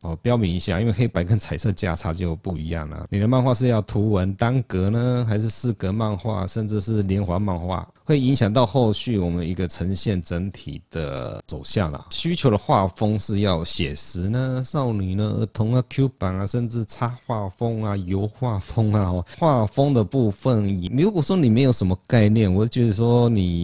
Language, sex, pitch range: Chinese, male, 95-120 Hz